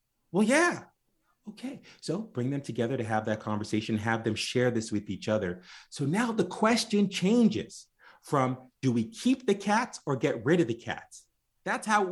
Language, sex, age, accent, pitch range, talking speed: English, male, 30-49, American, 110-170 Hz, 190 wpm